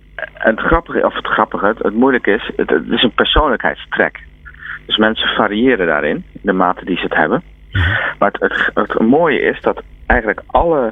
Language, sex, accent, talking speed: Dutch, male, Dutch, 180 wpm